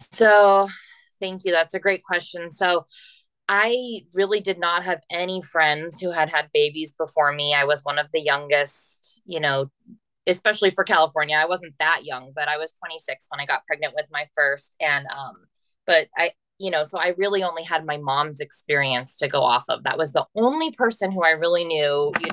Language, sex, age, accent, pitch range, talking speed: English, female, 20-39, American, 150-190 Hz, 200 wpm